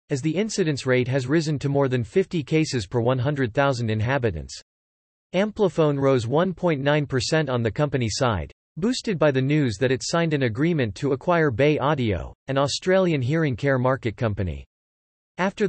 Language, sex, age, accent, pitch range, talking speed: English, male, 40-59, American, 120-155 Hz, 155 wpm